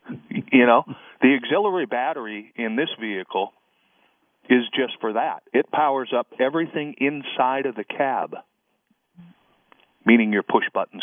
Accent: American